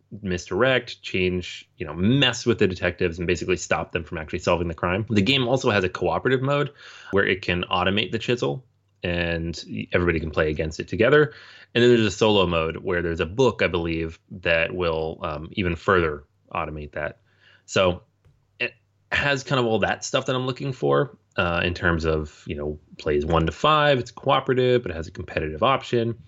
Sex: male